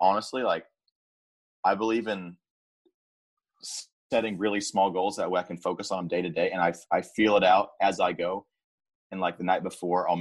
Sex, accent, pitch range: male, American, 80-90 Hz